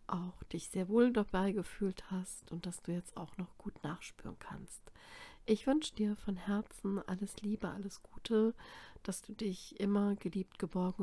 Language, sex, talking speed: German, female, 170 wpm